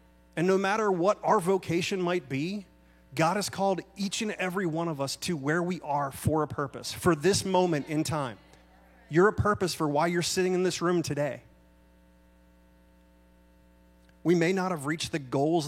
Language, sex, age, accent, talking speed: English, male, 30-49, American, 180 wpm